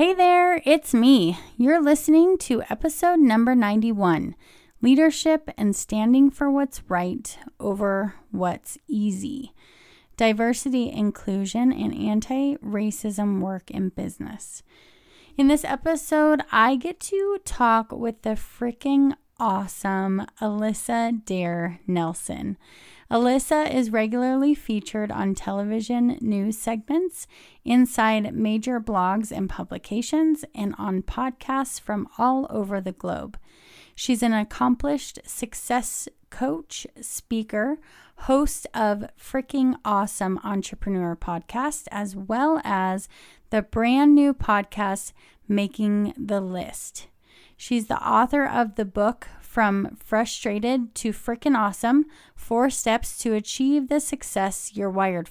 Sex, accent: female, American